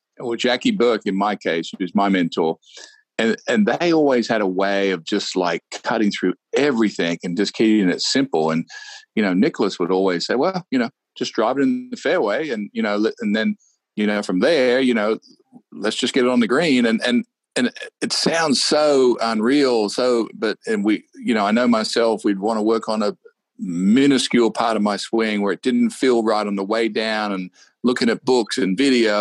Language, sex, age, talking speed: English, male, 50-69, 215 wpm